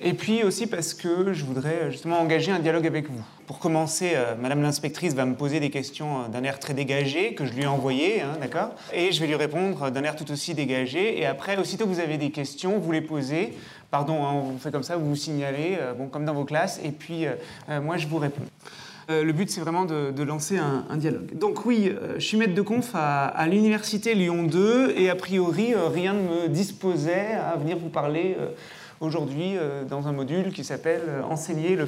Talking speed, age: 235 wpm, 30-49